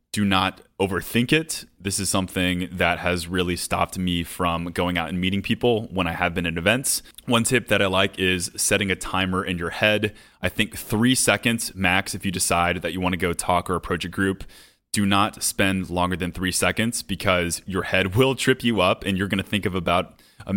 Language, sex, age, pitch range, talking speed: English, male, 20-39, 90-105 Hz, 215 wpm